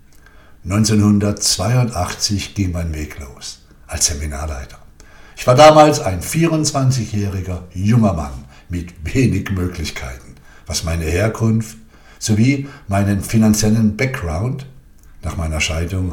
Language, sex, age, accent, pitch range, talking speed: German, male, 60-79, German, 75-110 Hz, 100 wpm